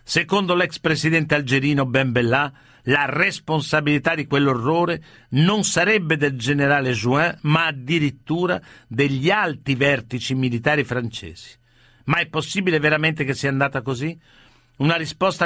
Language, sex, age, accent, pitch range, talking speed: Italian, male, 50-69, native, 135-165 Hz, 120 wpm